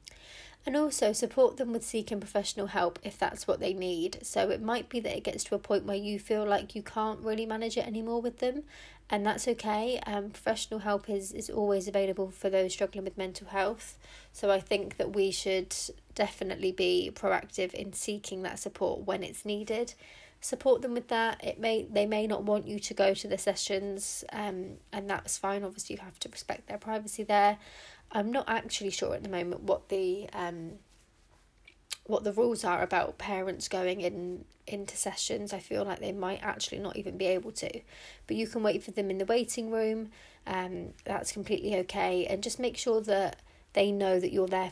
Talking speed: 200 wpm